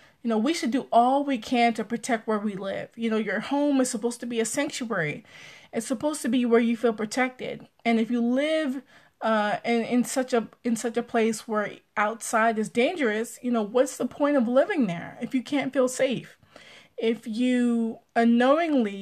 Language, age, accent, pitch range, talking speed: English, 20-39, American, 225-275 Hz, 200 wpm